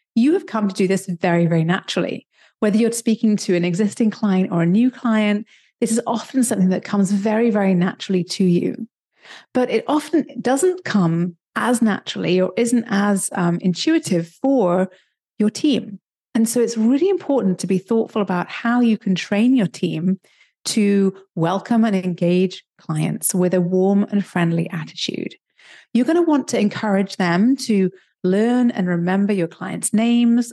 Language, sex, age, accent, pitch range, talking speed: English, female, 30-49, British, 180-235 Hz, 165 wpm